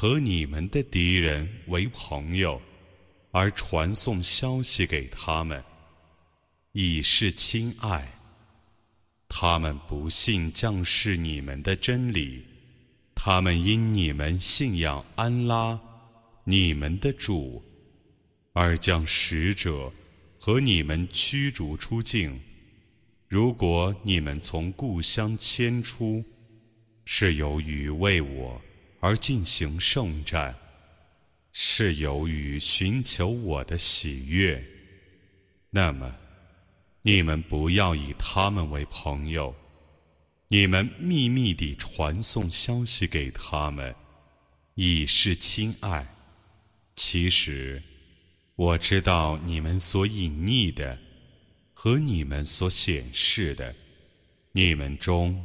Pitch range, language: 80-105 Hz, Arabic